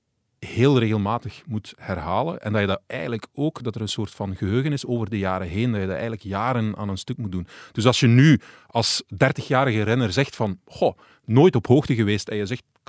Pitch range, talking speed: 100-125 Hz, 230 wpm